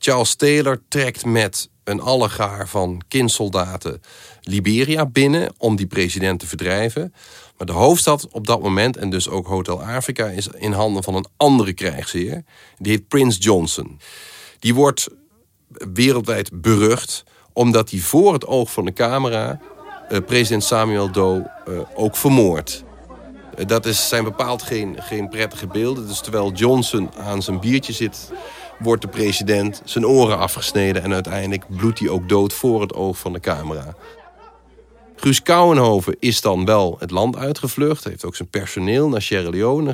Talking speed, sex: 150 wpm, male